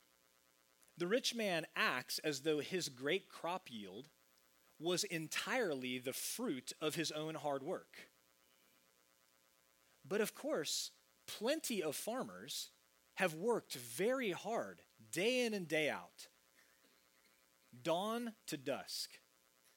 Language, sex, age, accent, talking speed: English, male, 30-49, American, 110 wpm